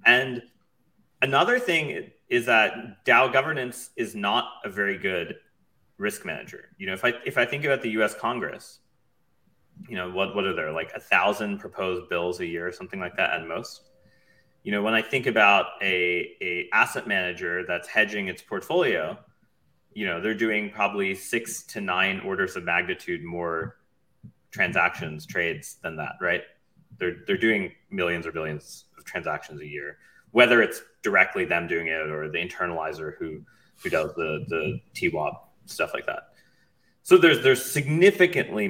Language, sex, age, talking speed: English, male, 30-49, 165 wpm